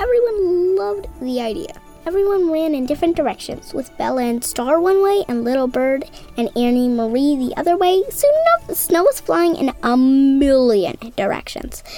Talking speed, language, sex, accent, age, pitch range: 170 wpm, English, female, American, 10-29, 245-380 Hz